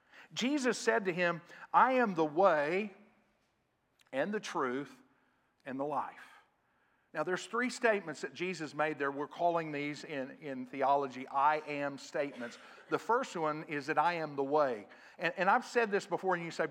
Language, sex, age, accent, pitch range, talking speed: English, male, 50-69, American, 150-200 Hz, 175 wpm